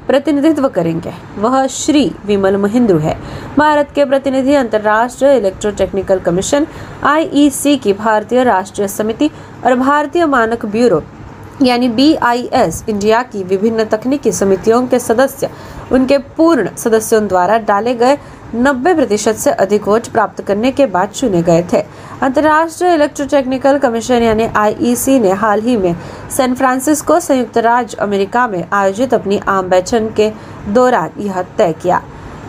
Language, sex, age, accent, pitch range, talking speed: Marathi, female, 20-39, native, 200-260 Hz, 135 wpm